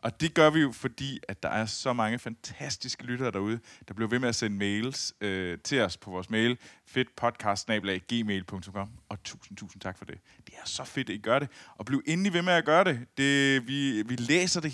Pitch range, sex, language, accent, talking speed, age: 105-140 Hz, male, Danish, native, 225 wpm, 20-39